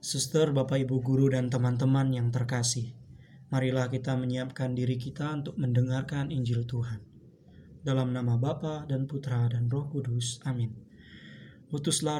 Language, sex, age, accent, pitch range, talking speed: Indonesian, male, 20-39, native, 125-145 Hz, 135 wpm